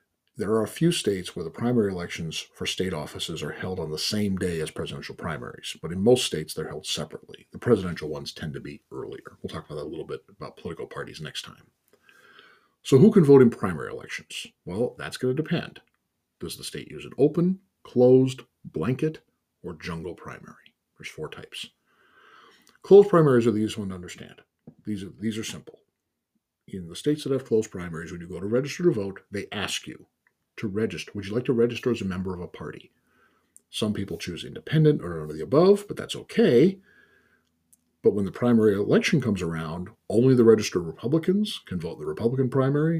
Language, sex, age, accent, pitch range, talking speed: English, male, 50-69, American, 95-155 Hz, 200 wpm